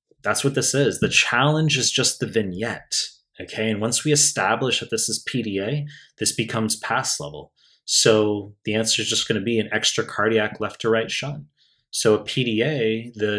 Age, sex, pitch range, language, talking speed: 30-49, male, 105-120 Hz, English, 190 wpm